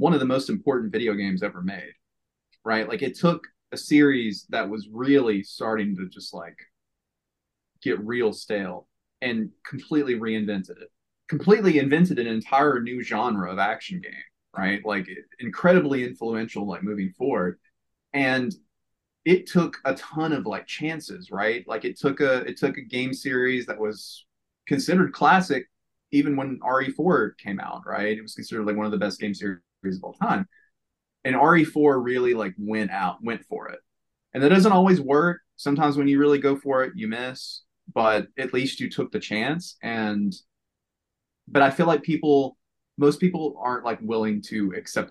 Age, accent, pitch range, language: 30-49, American, 105-145 Hz, English